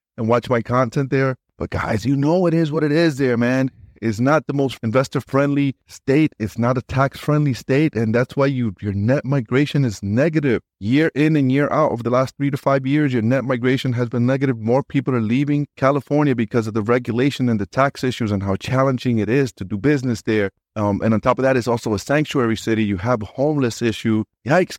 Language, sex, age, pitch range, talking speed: English, male, 30-49, 100-135 Hz, 225 wpm